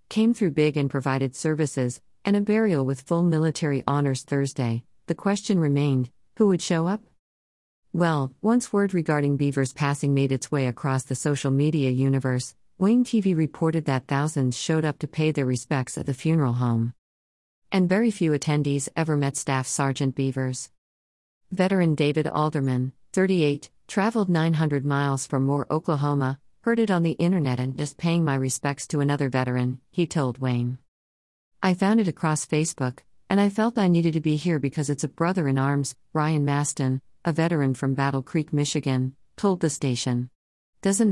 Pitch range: 130-165 Hz